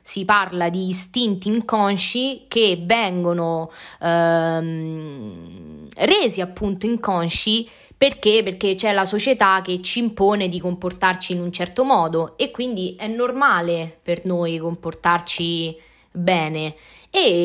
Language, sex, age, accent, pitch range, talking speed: Italian, female, 20-39, native, 175-220 Hz, 115 wpm